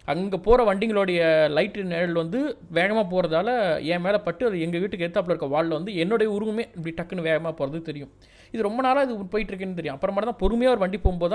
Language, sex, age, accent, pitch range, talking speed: Tamil, male, 20-39, native, 130-180 Hz, 200 wpm